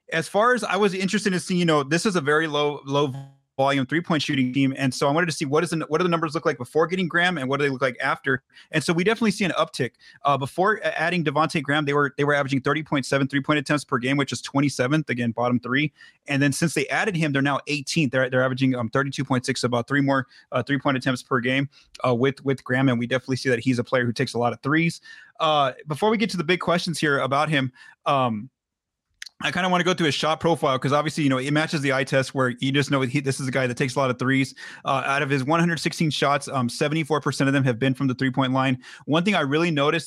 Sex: male